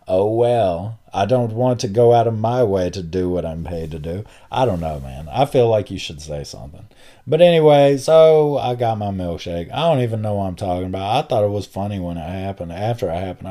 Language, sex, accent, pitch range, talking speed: English, male, American, 90-120 Hz, 245 wpm